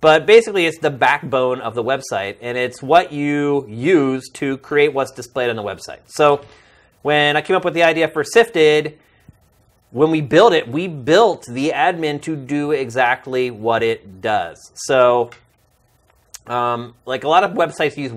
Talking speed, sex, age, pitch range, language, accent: 170 wpm, male, 30-49, 115-145 Hz, English, American